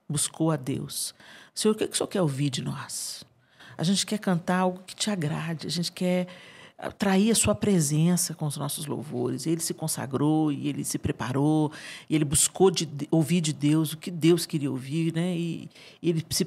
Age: 50-69